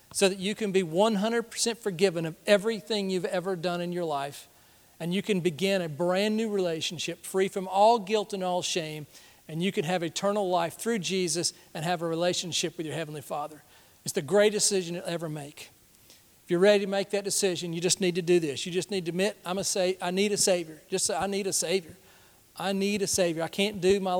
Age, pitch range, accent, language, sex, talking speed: 40-59, 170-200 Hz, American, English, male, 230 wpm